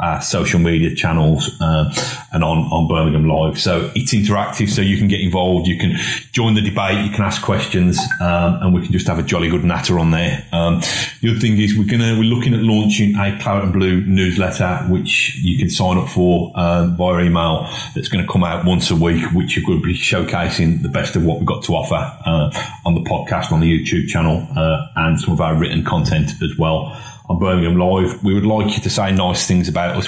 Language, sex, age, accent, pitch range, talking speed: English, male, 30-49, British, 85-100 Hz, 230 wpm